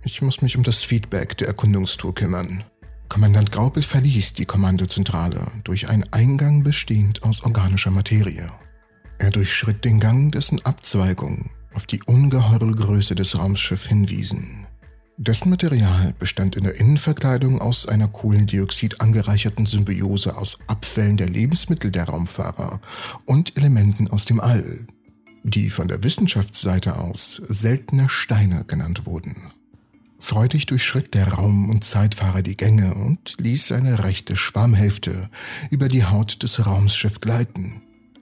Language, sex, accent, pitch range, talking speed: German, male, German, 100-125 Hz, 130 wpm